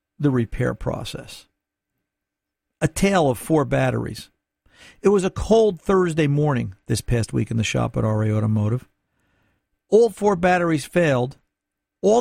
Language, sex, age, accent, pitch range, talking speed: English, male, 50-69, American, 125-185 Hz, 140 wpm